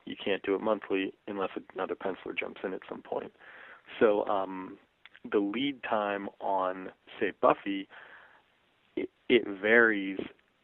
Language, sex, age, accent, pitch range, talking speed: English, male, 30-49, American, 100-115 Hz, 135 wpm